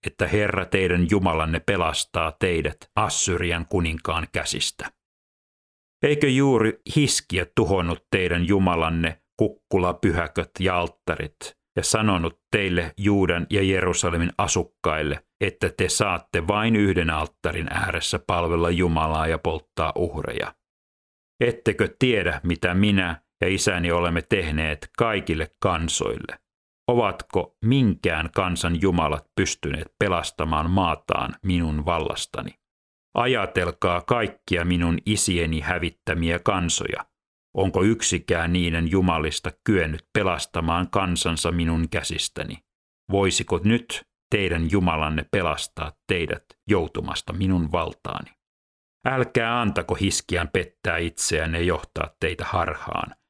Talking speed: 100 wpm